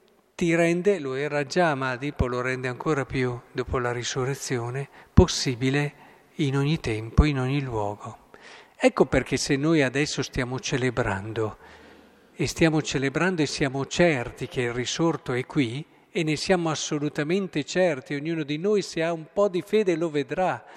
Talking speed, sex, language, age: 155 wpm, male, Italian, 50-69